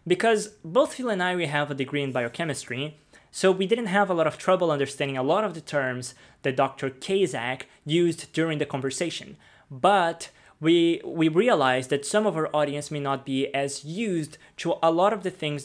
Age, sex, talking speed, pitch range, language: 20-39, male, 200 wpm, 140-180 Hz, English